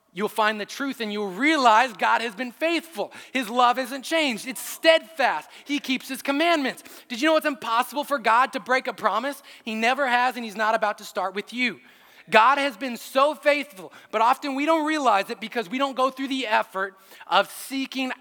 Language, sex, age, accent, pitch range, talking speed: English, male, 20-39, American, 190-255 Hz, 210 wpm